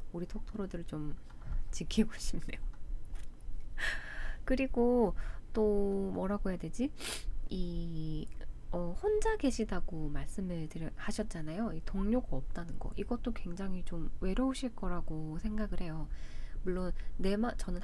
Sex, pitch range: female, 160-220 Hz